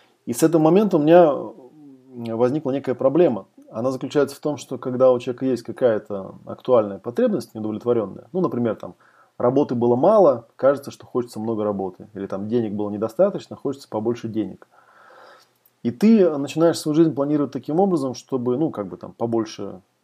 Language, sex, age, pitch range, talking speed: Russian, male, 20-39, 110-135 Hz, 165 wpm